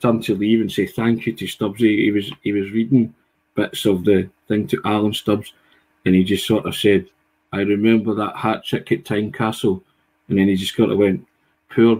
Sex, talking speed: male, 220 wpm